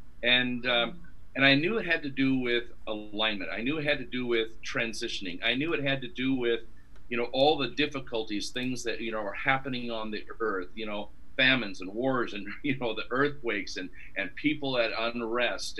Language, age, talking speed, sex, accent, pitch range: English, 50-69, 210 wpm, male, American, 105-125 Hz